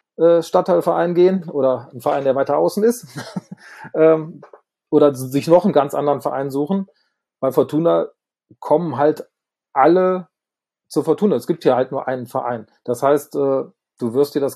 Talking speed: 155 wpm